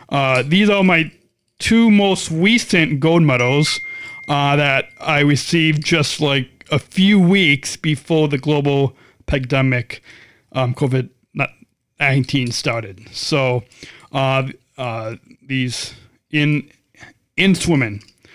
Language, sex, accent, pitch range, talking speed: English, male, American, 130-170 Hz, 105 wpm